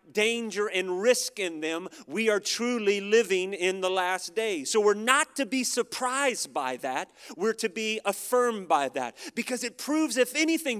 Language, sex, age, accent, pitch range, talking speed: English, male, 40-59, American, 205-260 Hz, 180 wpm